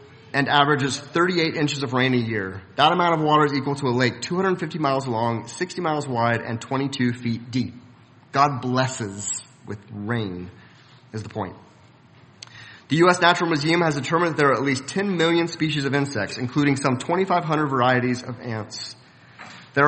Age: 30-49